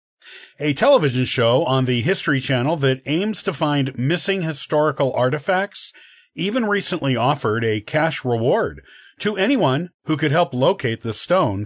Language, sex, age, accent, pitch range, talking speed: English, male, 40-59, American, 125-165 Hz, 145 wpm